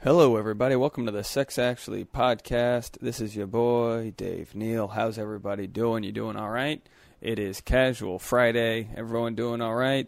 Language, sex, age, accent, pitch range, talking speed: English, male, 30-49, American, 110-125 Hz, 175 wpm